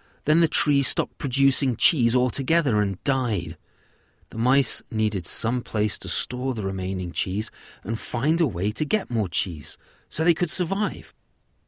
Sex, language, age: male, English, 40-59